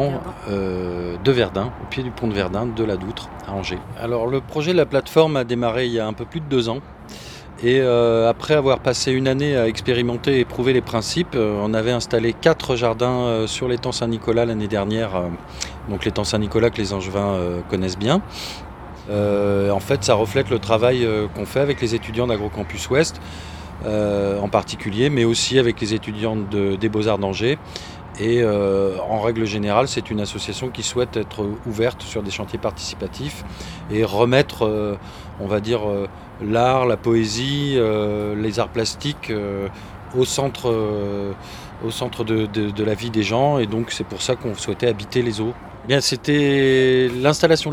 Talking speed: 180 wpm